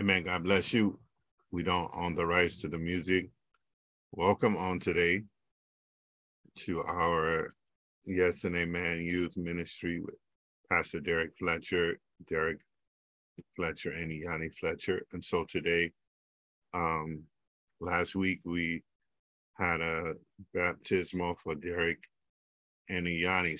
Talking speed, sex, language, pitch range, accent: 115 wpm, male, English, 80-90 Hz, American